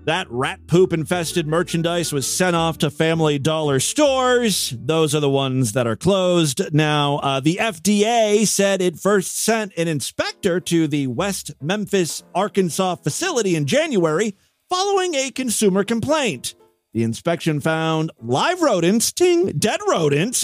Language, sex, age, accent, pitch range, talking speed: English, male, 40-59, American, 155-225 Hz, 140 wpm